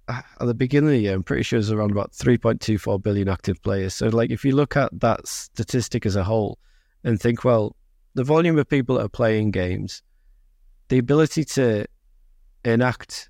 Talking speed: 195 wpm